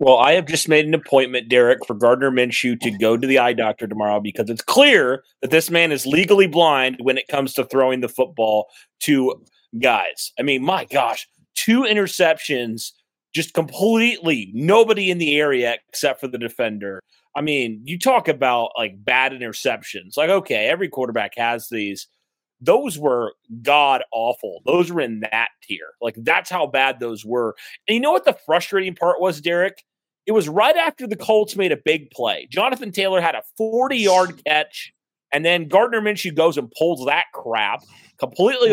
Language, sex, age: English, male, 30-49